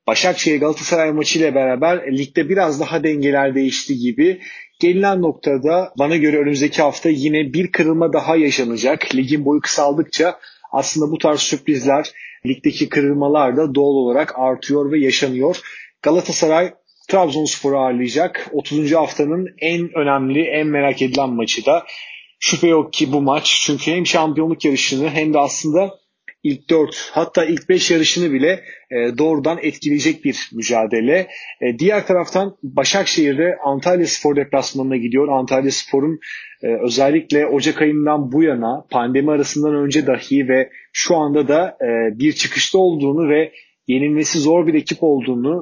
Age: 30-49